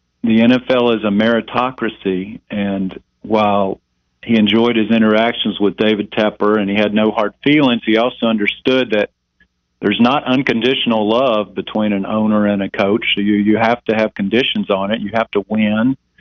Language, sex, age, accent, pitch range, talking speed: English, male, 50-69, American, 100-115 Hz, 170 wpm